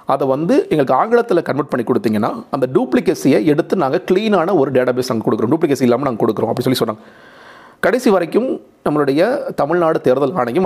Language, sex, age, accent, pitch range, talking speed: Tamil, male, 40-59, native, 120-155 Hz, 165 wpm